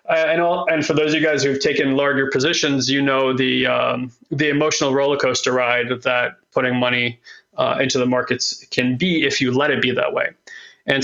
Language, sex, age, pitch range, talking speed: English, male, 30-49, 130-145 Hz, 205 wpm